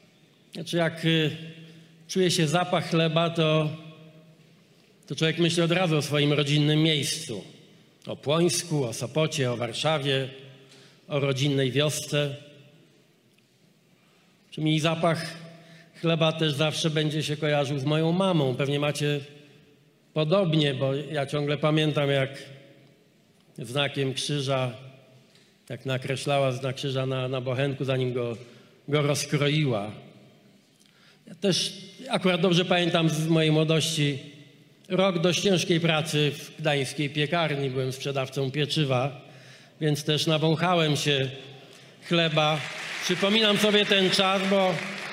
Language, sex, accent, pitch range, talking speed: Polish, male, native, 145-170 Hz, 115 wpm